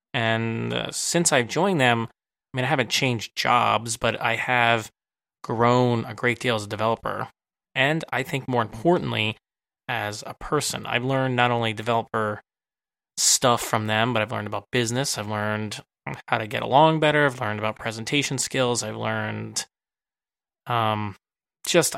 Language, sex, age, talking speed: English, male, 20-39, 160 wpm